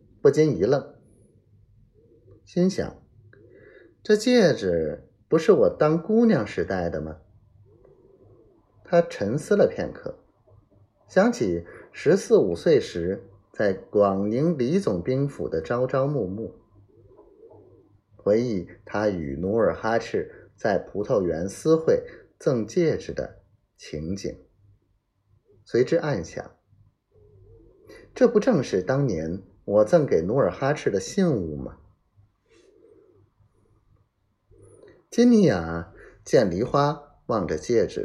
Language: Chinese